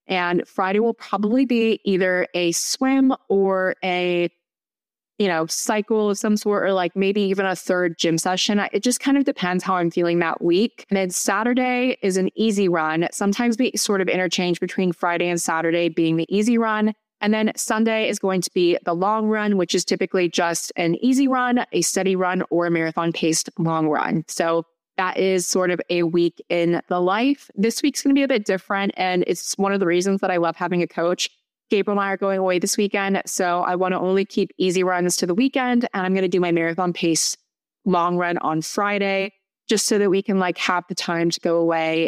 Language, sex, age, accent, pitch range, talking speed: English, female, 20-39, American, 175-215 Hz, 215 wpm